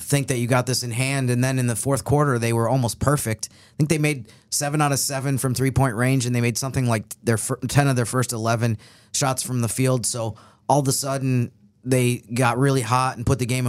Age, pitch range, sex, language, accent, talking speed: 30-49, 115-135 Hz, male, English, American, 245 wpm